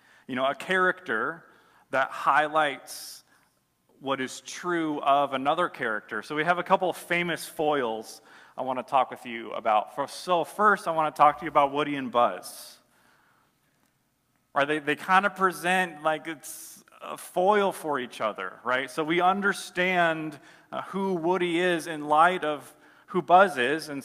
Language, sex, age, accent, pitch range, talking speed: English, male, 30-49, American, 135-180 Hz, 160 wpm